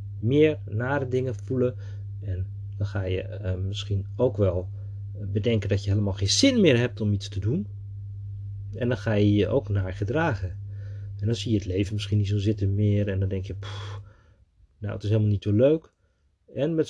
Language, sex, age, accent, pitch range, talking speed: Dutch, male, 40-59, Dutch, 100-125 Hz, 200 wpm